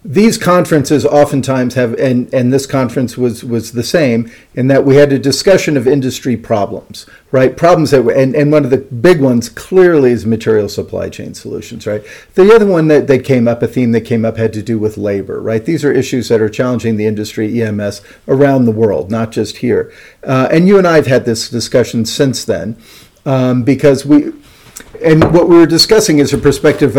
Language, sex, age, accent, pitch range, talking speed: English, male, 50-69, American, 120-160 Hz, 210 wpm